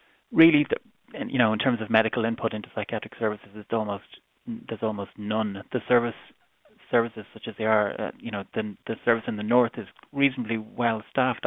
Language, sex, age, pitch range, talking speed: English, male, 30-49, 105-115 Hz, 190 wpm